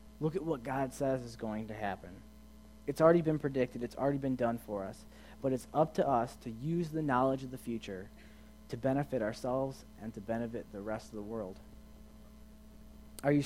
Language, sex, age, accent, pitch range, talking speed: English, male, 30-49, American, 110-150 Hz, 195 wpm